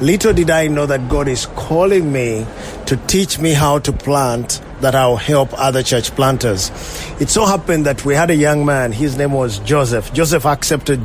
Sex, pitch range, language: male, 130-160 Hz, English